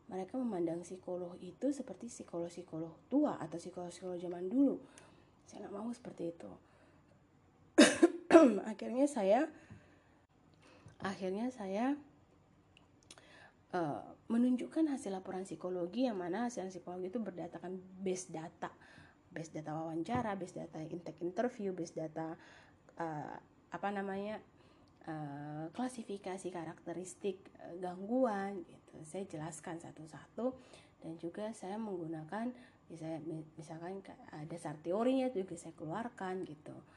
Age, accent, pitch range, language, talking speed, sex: 20-39, native, 170-215 Hz, Indonesian, 105 wpm, female